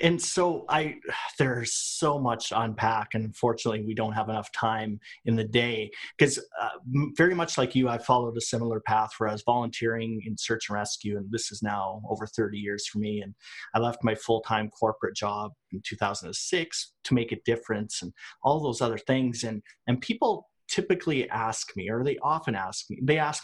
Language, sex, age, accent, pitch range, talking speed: English, male, 30-49, American, 110-140 Hz, 190 wpm